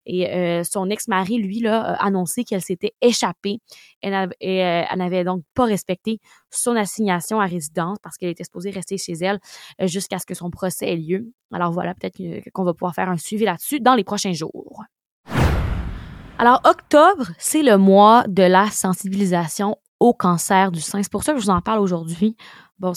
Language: French